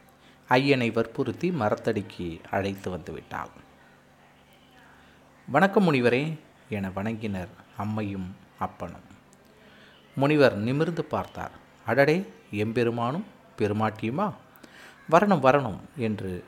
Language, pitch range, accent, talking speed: Tamil, 100-140 Hz, native, 75 wpm